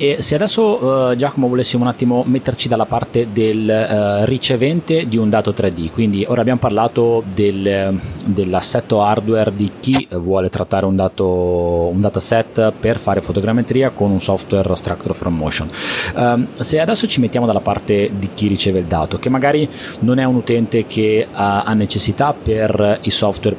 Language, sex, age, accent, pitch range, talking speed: Italian, male, 30-49, native, 100-120 Hz, 170 wpm